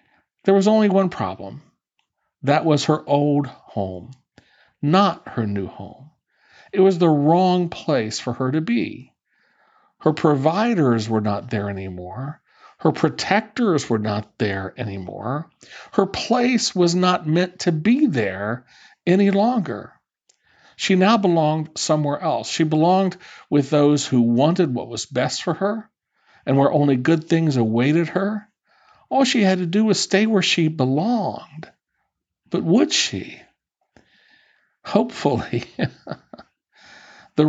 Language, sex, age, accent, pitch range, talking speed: English, male, 50-69, American, 135-195 Hz, 135 wpm